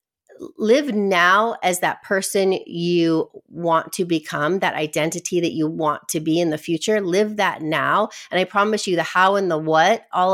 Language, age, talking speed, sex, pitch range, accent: English, 30-49, 185 wpm, female, 170-215 Hz, American